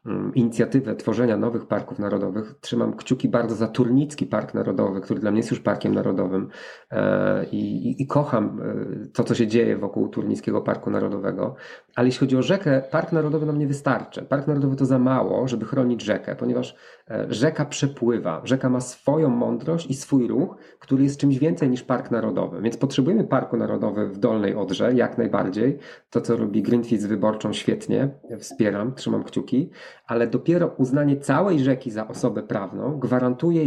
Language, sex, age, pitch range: Polish, male, 40-59, 125-155 Hz